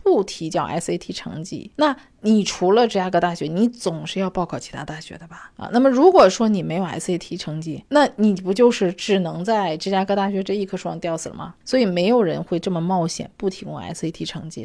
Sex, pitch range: female, 175-225 Hz